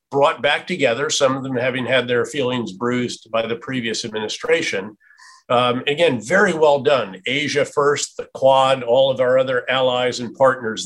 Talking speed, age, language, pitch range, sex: 170 wpm, 50-69, English, 120-145 Hz, male